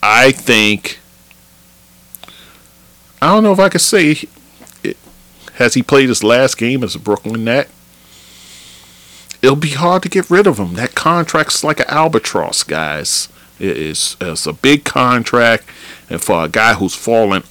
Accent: American